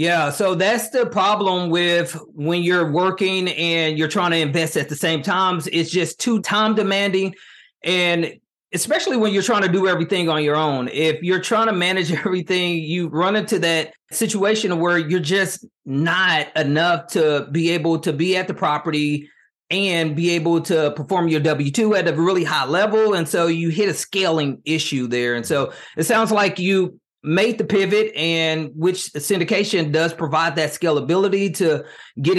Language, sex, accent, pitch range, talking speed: English, male, American, 150-190 Hz, 180 wpm